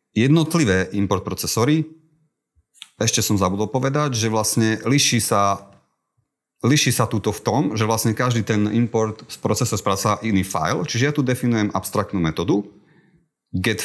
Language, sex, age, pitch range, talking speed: Slovak, male, 30-49, 95-130 Hz, 145 wpm